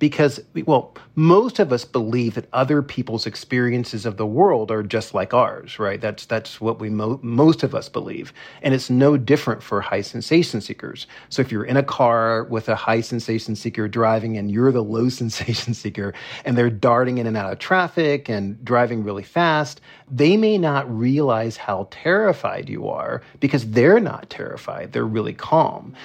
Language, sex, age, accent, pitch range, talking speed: English, male, 40-59, American, 115-140 Hz, 185 wpm